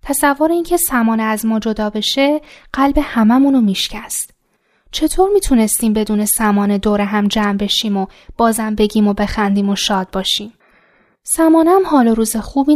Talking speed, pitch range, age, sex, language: 150 wpm, 195-275 Hz, 10-29, female, Persian